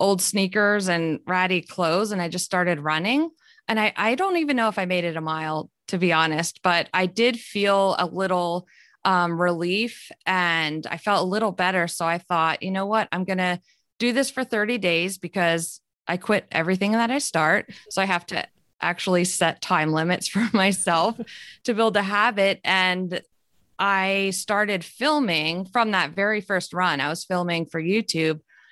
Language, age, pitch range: English, 20-39, 175-215 Hz